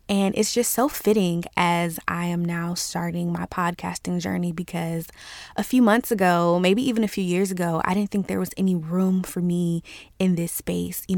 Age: 20-39